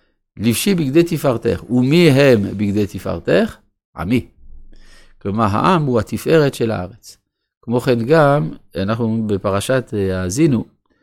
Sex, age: male, 50-69